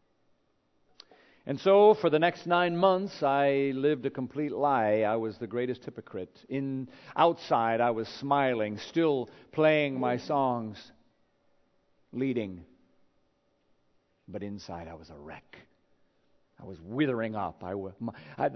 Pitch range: 120-155 Hz